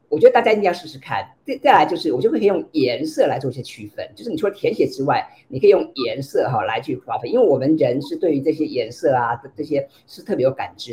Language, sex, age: Chinese, female, 50-69